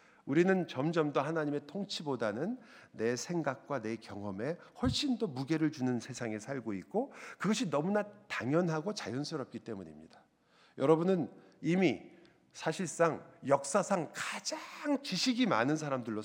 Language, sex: Korean, male